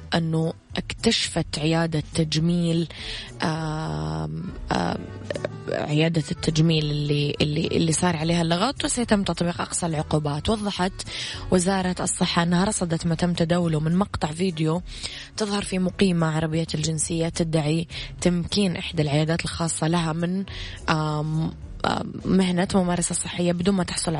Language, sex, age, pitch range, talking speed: Arabic, female, 20-39, 160-185 Hz, 115 wpm